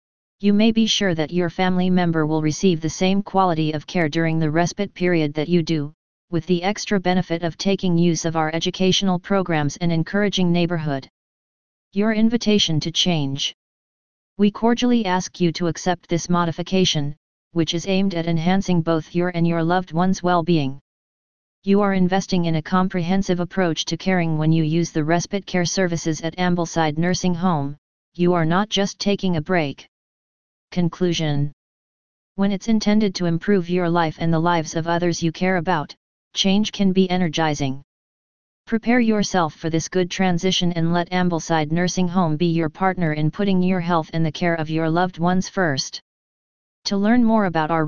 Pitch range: 165-185 Hz